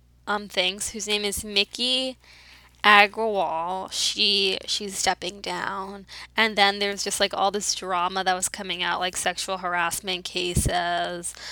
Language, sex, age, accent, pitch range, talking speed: English, female, 10-29, American, 185-215 Hz, 140 wpm